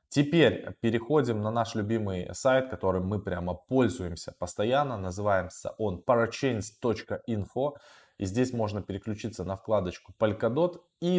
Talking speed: 120 wpm